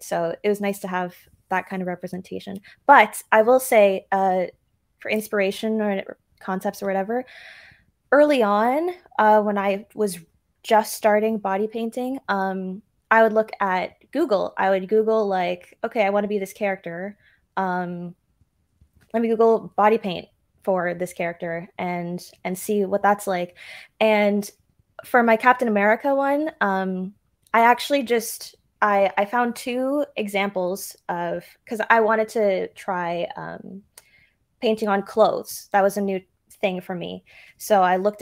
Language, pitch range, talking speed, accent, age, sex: English, 185-220 Hz, 150 wpm, American, 20-39, female